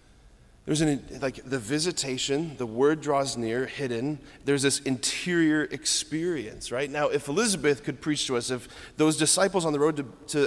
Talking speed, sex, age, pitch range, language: 170 wpm, male, 30-49, 130-155 Hz, English